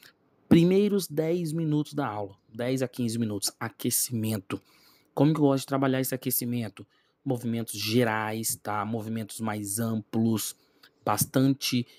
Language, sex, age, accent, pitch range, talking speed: Portuguese, male, 20-39, Brazilian, 120-150 Hz, 125 wpm